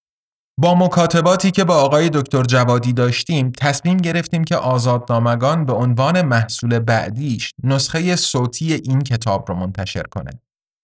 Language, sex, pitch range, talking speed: Persian, male, 115-155 Hz, 135 wpm